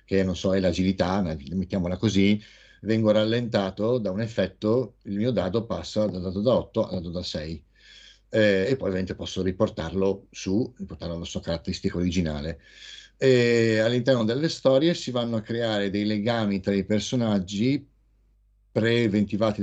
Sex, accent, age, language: male, native, 60-79, Italian